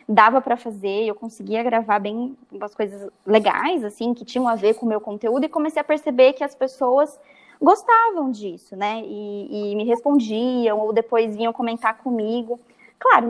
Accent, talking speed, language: Brazilian, 175 wpm, Portuguese